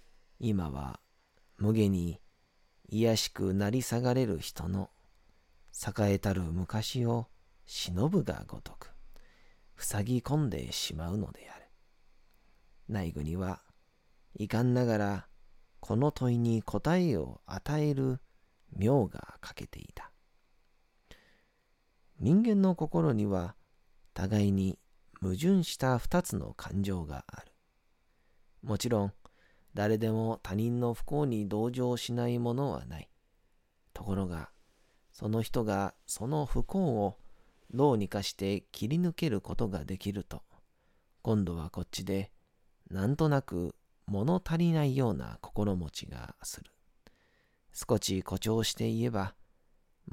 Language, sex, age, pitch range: Japanese, male, 40-59, 95-120 Hz